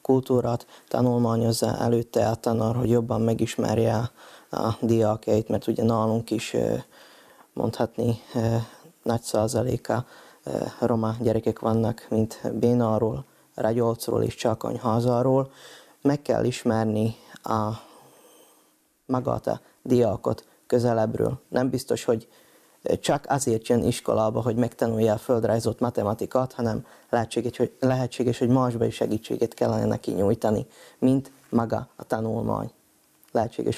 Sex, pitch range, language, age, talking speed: male, 110-125 Hz, Hungarian, 20-39, 105 wpm